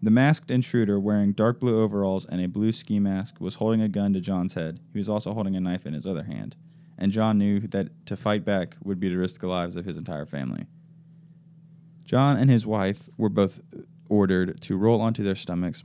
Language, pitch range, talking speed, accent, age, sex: English, 90-115 Hz, 220 wpm, American, 20-39, male